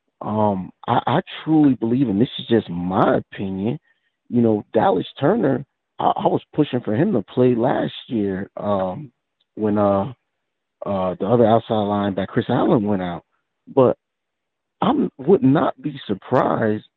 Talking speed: 155 wpm